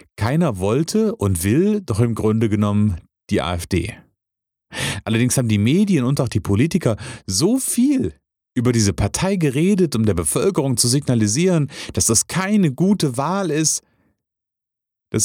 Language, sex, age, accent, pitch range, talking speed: German, male, 40-59, German, 100-140 Hz, 140 wpm